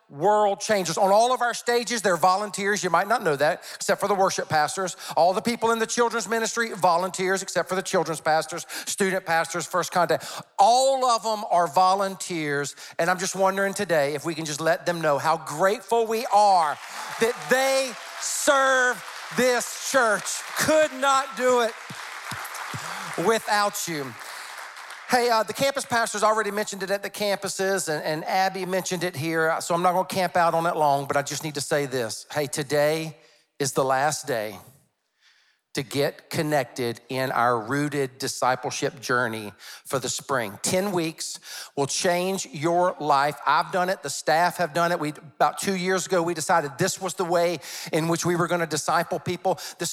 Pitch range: 165-220 Hz